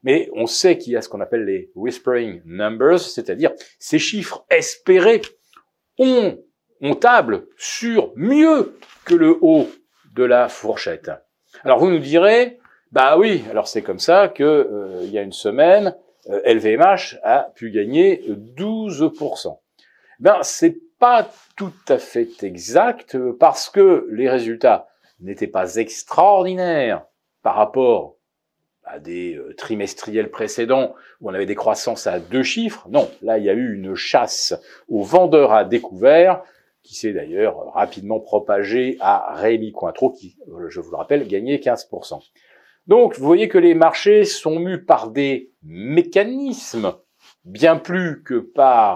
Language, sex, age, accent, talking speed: French, male, 40-59, French, 145 wpm